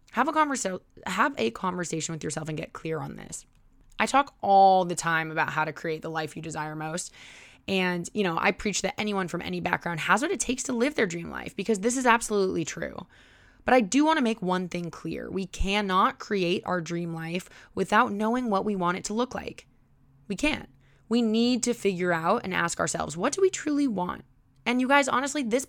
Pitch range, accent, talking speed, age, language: 170-225 Hz, American, 220 wpm, 20-39, English